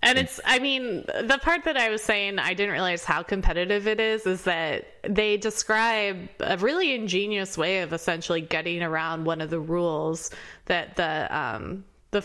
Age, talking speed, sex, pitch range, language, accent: 20-39, 180 wpm, female, 165-210 Hz, English, American